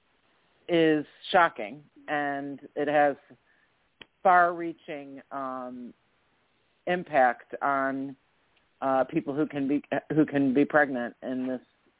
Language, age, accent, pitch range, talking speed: English, 50-69, American, 135-165 Hz, 105 wpm